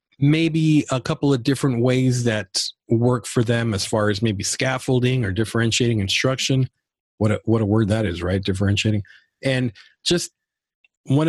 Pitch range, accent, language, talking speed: 105-130 Hz, American, English, 160 wpm